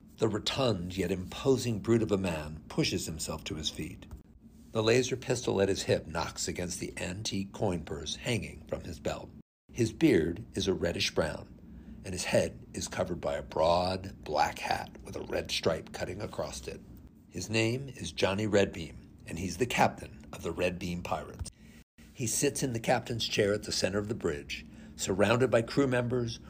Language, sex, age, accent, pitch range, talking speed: English, male, 60-79, American, 90-115 Hz, 180 wpm